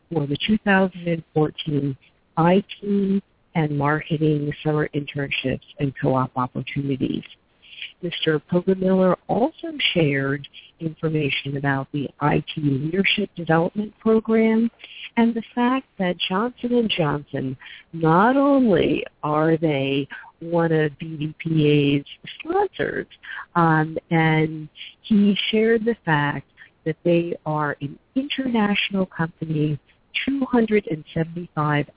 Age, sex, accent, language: 50-69, female, American, English